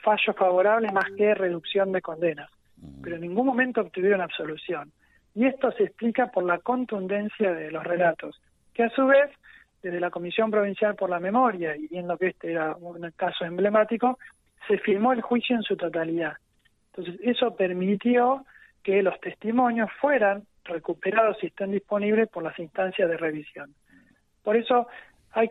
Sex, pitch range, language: male, 175-225 Hz, Spanish